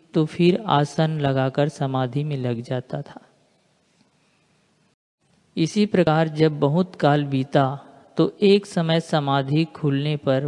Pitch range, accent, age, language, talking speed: 145-170 Hz, native, 50-69, Hindi, 120 wpm